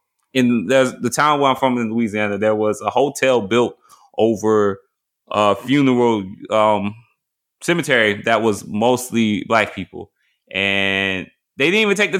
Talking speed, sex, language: 145 wpm, male, English